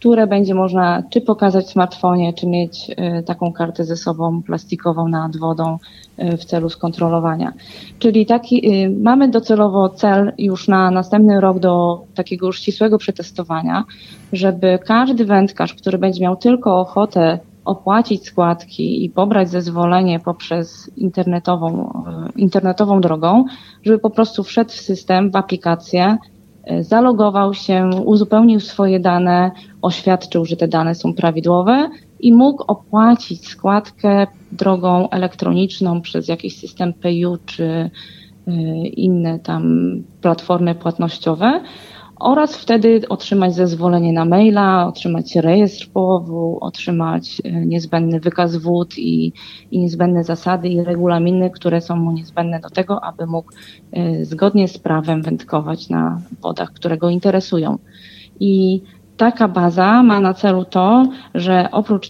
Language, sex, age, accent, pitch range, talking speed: Polish, female, 20-39, native, 170-200 Hz, 130 wpm